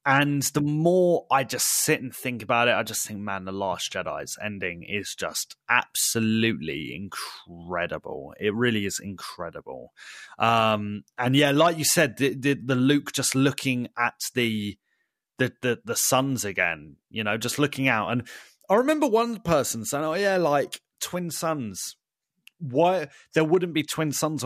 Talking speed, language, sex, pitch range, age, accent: 165 wpm, English, male, 125-165 Hz, 30-49, British